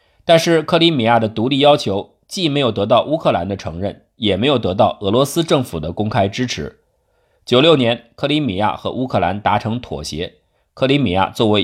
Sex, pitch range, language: male, 105-150 Hz, Chinese